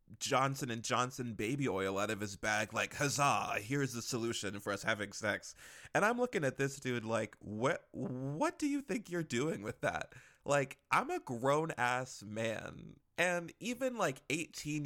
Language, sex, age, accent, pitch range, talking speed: English, male, 20-39, American, 110-145 Hz, 180 wpm